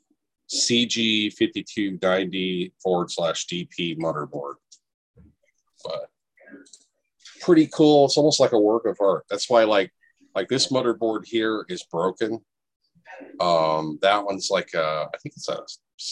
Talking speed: 115 wpm